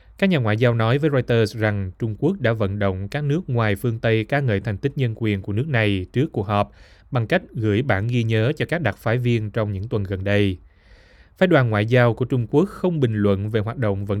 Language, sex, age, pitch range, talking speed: Vietnamese, male, 20-39, 100-125 Hz, 255 wpm